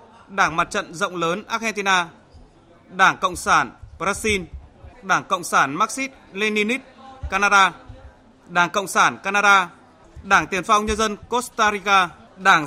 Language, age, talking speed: Vietnamese, 20-39, 135 wpm